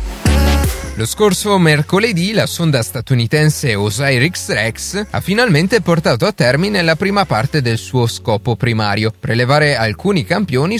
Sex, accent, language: male, native, Italian